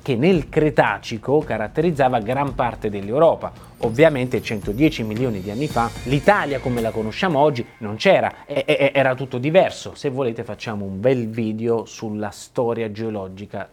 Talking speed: 140 wpm